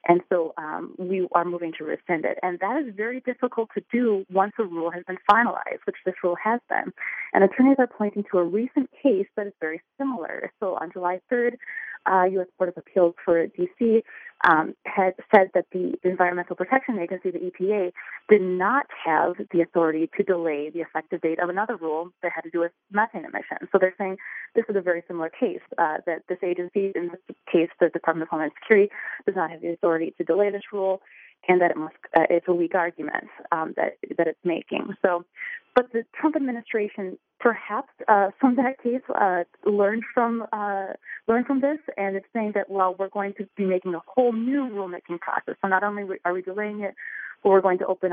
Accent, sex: American, female